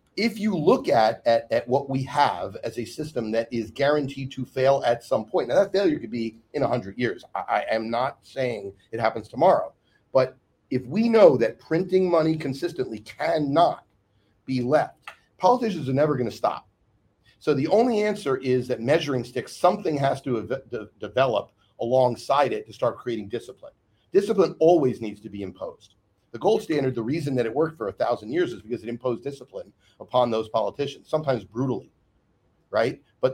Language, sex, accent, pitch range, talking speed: English, male, American, 115-145 Hz, 185 wpm